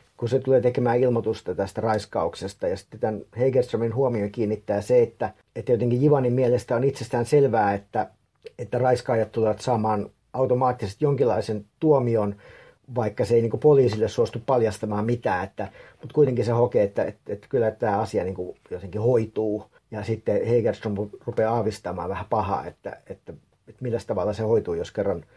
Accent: Finnish